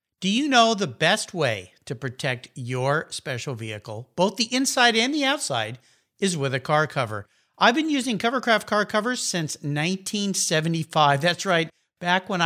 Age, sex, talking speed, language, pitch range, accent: 50-69, male, 165 wpm, English, 145-225 Hz, American